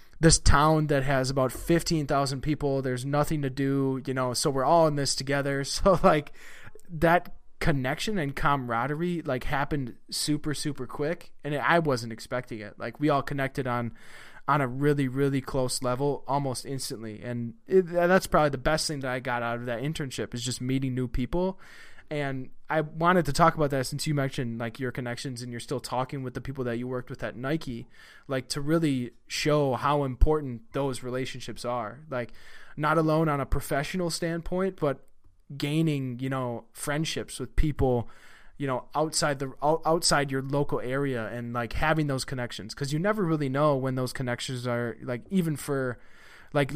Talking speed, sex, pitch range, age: 180 wpm, male, 125-150 Hz, 20-39